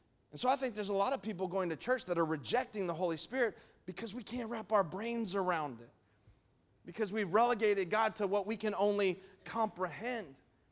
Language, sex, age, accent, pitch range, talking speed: English, male, 30-49, American, 195-250 Hz, 200 wpm